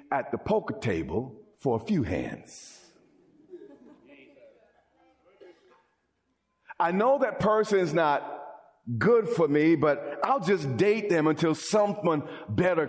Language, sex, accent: English, male, American